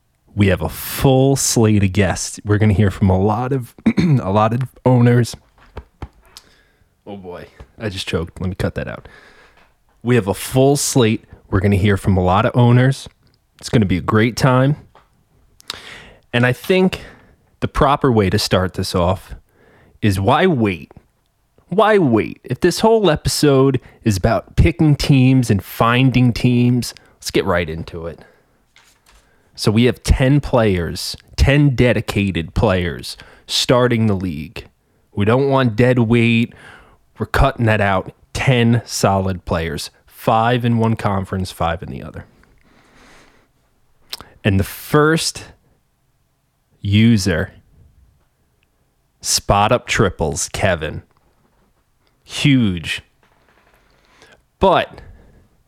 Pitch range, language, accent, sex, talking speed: 95-130 Hz, English, American, male, 130 wpm